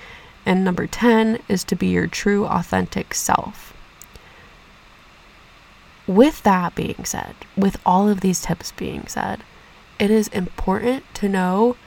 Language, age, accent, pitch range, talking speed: English, 20-39, American, 180-210 Hz, 130 wpm